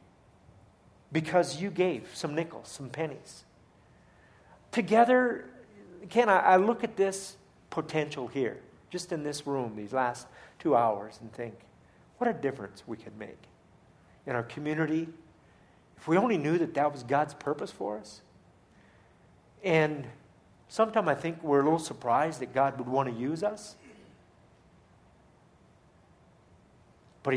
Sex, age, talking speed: male, 50-69, 135 wpm